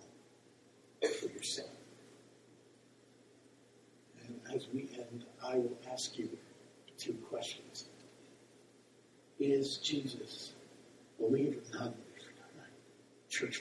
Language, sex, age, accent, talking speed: English, male, 60-79, American, 80 wpm